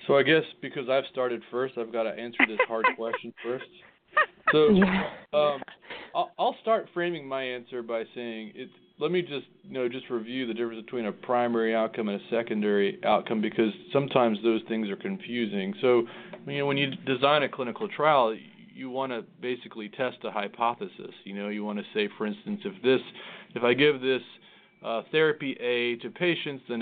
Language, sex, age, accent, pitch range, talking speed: English, male, 40-59, American, 105-150 Hz, 185 wpm